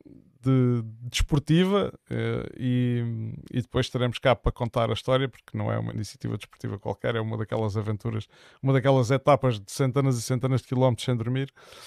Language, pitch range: Portuguese, 120-150 Hz